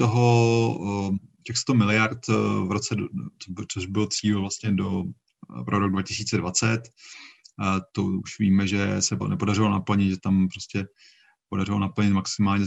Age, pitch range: 30-49, 95-105 Hz